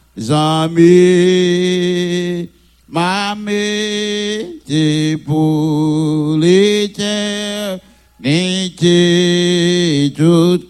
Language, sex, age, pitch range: French, male, 60-79, 120-160 Hz